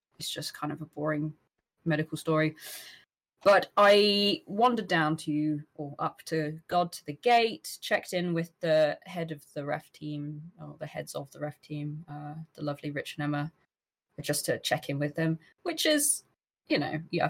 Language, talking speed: English, 185 wpm